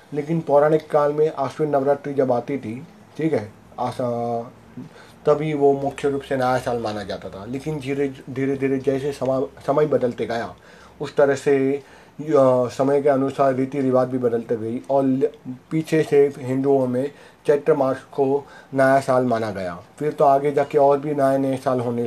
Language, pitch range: Hindi, 125-145 Hz